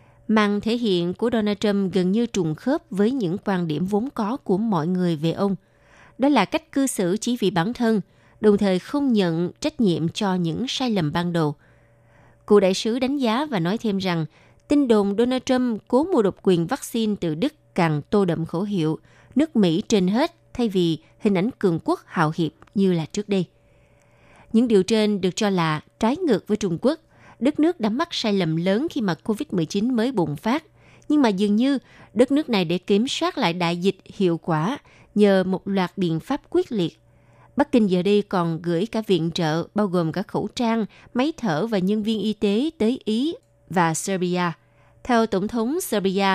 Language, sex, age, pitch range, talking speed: Vietnamese, female, 20-39, 170-230 Hz, 205 wpm